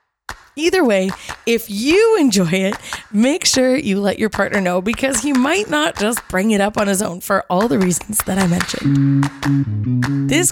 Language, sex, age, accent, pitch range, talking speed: English, female, 20-39, American, 180-270 Hz, 185 wpm